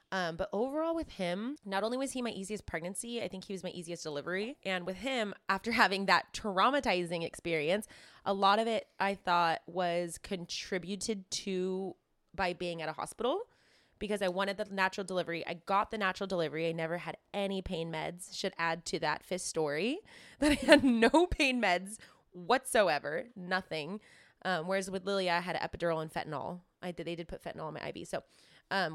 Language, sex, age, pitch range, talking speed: English, female, 20-39, 175-210 Hz, 195 wpm